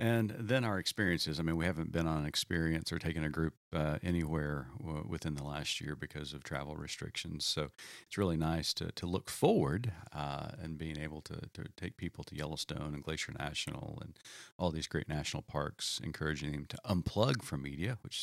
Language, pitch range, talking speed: English, 75-95 Hz, 200 wpm